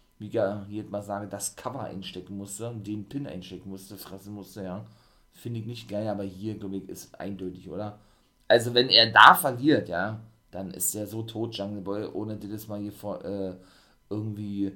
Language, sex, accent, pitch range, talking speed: German, male, German, 105-125 Hz, 195 wpm